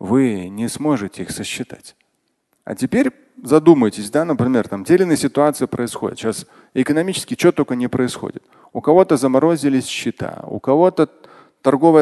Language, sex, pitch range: Russian, male, 130-175 Hz